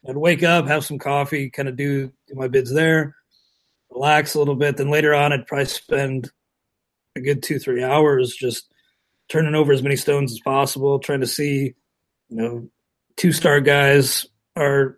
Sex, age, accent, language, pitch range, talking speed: male, 30-49, American, English, 130-155 Hz, 175 wpm